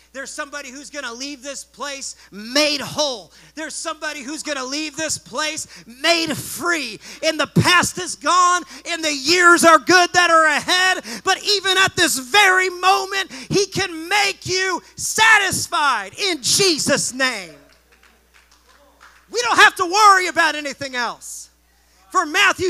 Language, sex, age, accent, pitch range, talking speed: English, male, 30-49, American, 240-355 Hz, 150 wpm